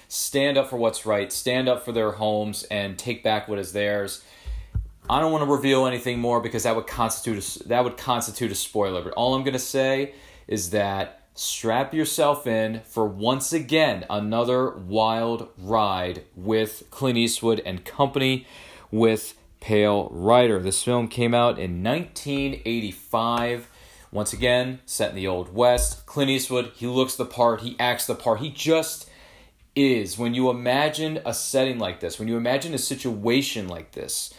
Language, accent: English, American